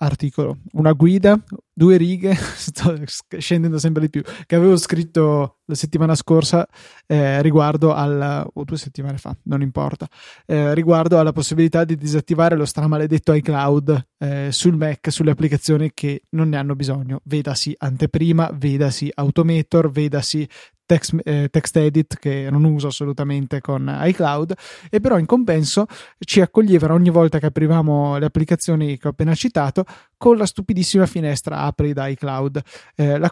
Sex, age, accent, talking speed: male, 20-39, native, 155 wpm